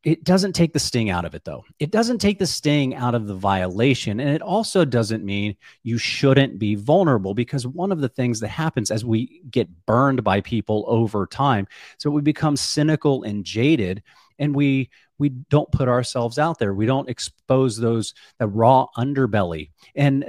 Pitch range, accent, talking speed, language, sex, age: 110-145 Hz, American, 185 wpm, English, male, 40-59